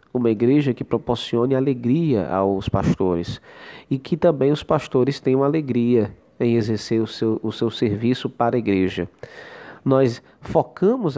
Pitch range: 115-135 Hz